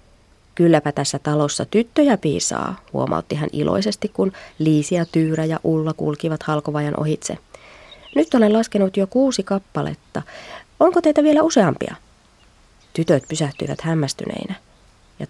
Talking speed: 120 wpm